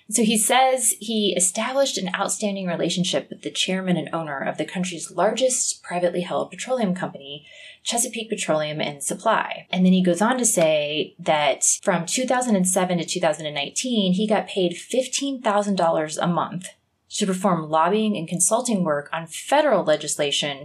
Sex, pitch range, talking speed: female, 160-210 Hz, 150 wpm